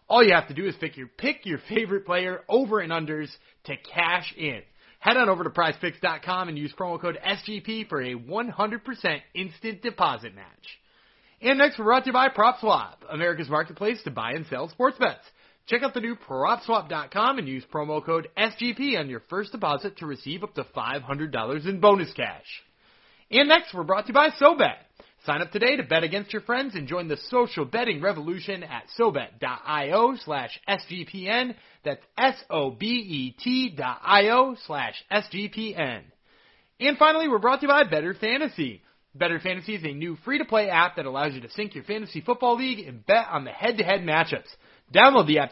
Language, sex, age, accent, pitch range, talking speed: English, male, 30-49, American, 155-230 Hz, 180 wpm